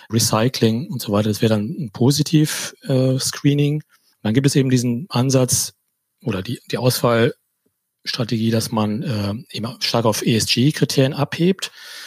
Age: 30-49